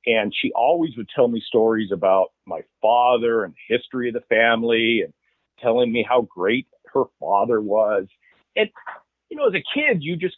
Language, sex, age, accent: English, male, 40-59, American